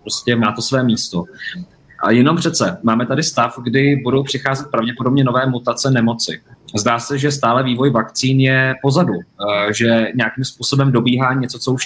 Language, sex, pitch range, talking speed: Czech, male, 115-140 Hz, 165 wpm